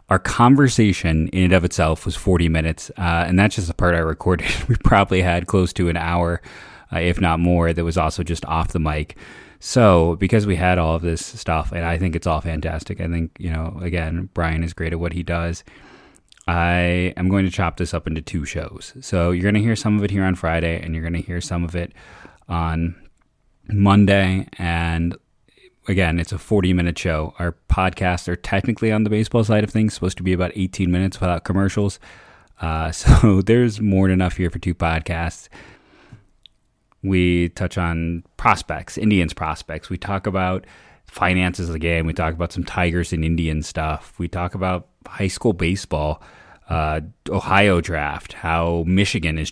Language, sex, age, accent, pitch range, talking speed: English, male, 30-49, American, 85-95 Hz, 195 wpm